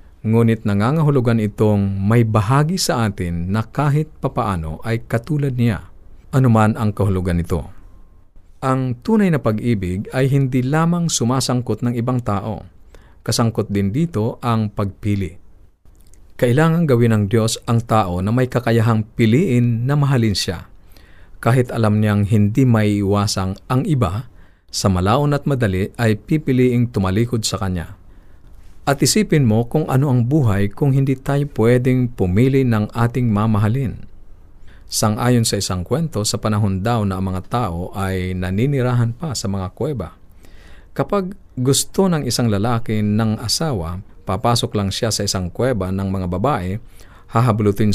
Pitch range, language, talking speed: 95-125 Hz, Filipino, 140 wpm